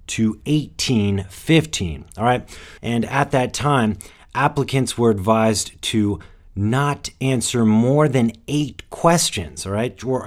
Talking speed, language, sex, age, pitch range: 125 wpm, English, male, 30-49, 95-130 Hz